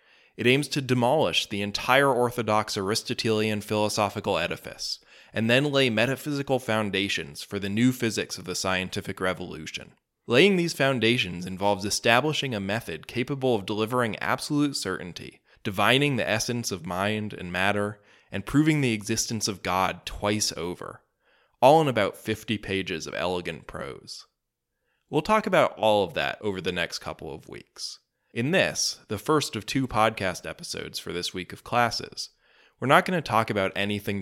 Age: 20-39